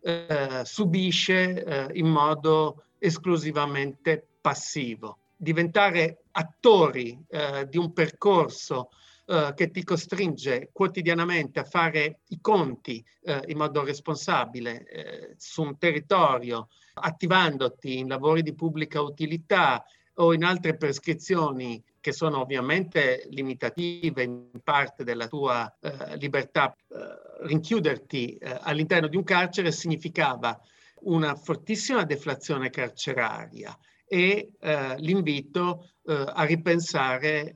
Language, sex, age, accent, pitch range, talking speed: Italian, male, 50-69, native, 140-175 Hz, 105 wpm